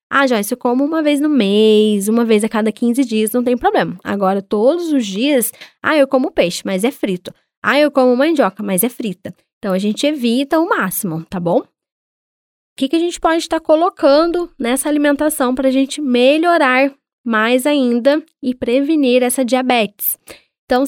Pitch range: 230-290 Hz